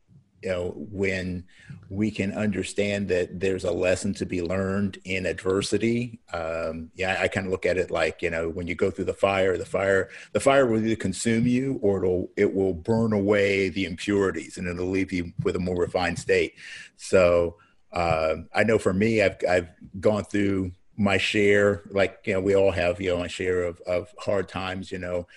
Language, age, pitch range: English, 50-69, 90-100 Hz